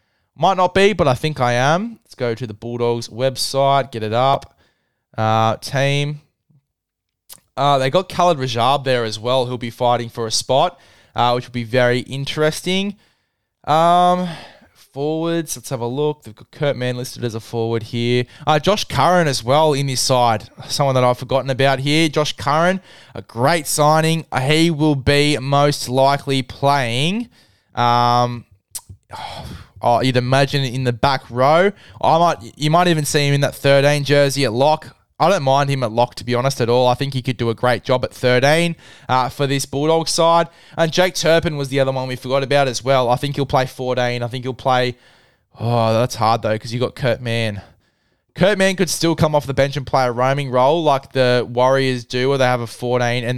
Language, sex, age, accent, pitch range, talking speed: English, male, 20-39, Australian, 120-150 Hz, 200 wpm